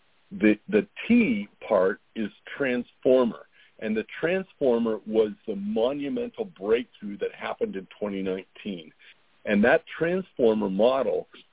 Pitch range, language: 105-175 Hz, English